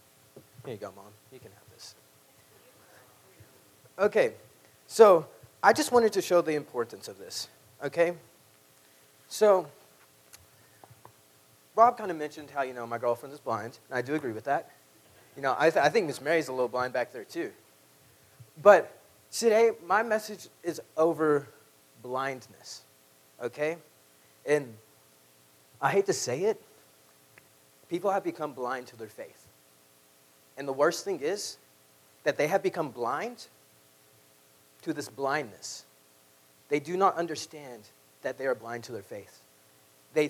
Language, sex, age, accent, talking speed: English, male, 30-49, American, 145 wpm